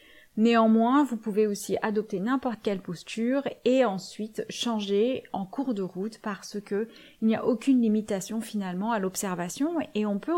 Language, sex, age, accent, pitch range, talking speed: French, female, 30-49, French, 195-245 Hz, 160 wpm